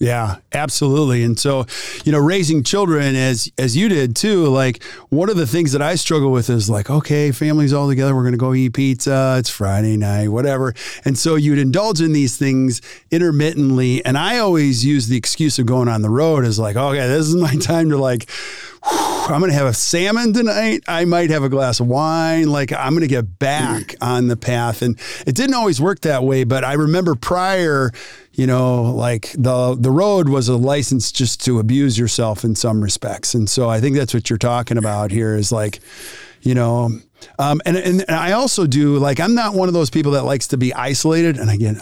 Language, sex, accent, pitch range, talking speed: English, male, American, 120-155 Hz, 215 wpm